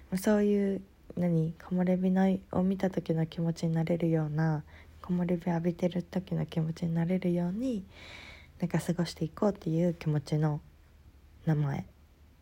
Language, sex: Japanese, female